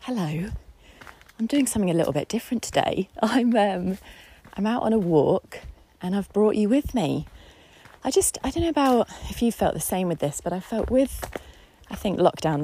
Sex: female